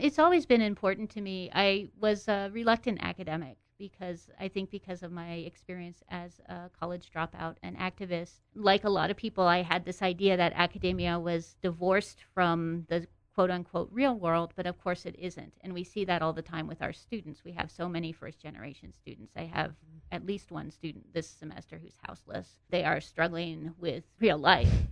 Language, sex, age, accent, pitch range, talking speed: English, female, 40-59, American, 170-195 Hz, 195 wpm